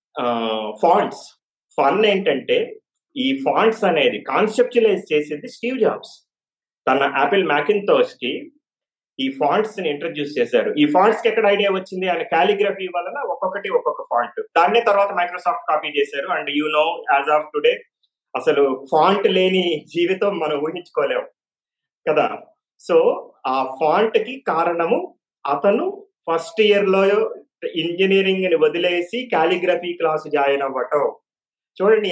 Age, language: 30-49, Telugu